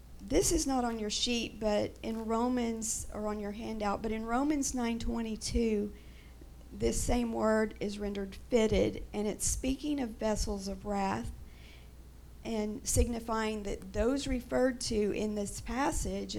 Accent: American